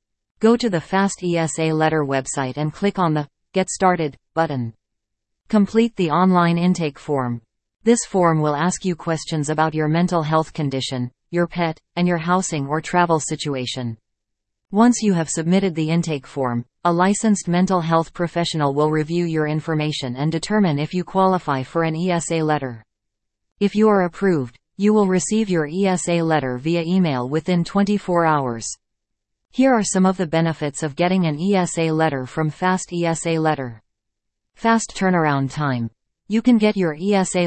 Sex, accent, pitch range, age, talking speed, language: female, American, 145-185 Hz, 40-59, 160 wpm, English